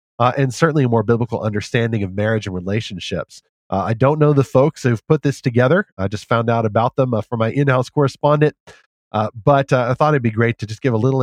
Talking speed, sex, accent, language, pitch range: 240 wpm, male, American, English, 105-140 Hz